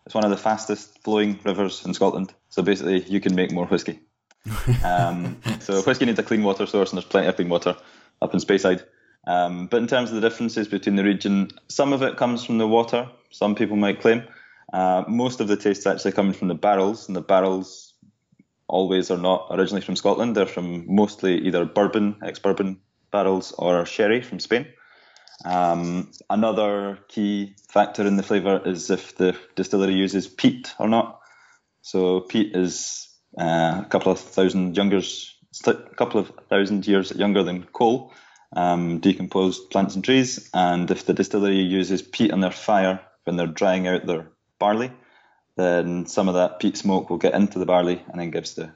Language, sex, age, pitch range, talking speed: English, male, 20-39, 90-105 Hz, 185 wpm